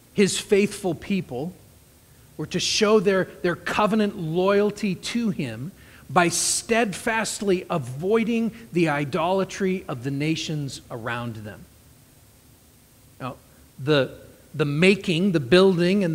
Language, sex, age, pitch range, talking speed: English, male, 40-59, 145-205 Hz, 110 wpm